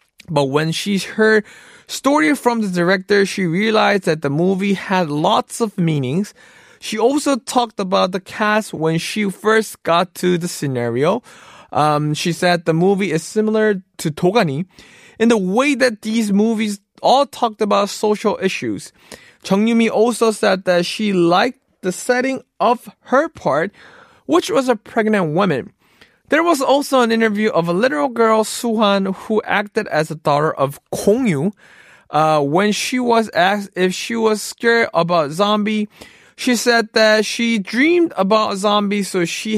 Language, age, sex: Korean, 20-39, male